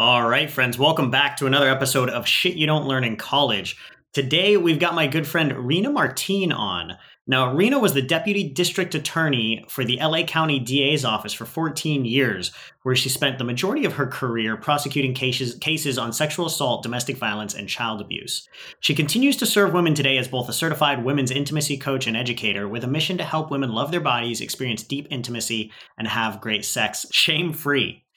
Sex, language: male, English